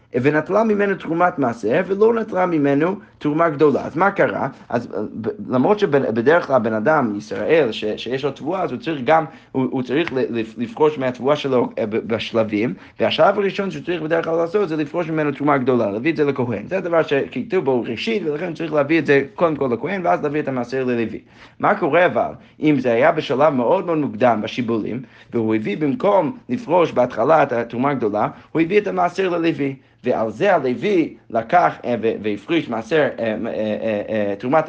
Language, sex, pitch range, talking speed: Hebrew, male, 125-170 Hz, 140 wpm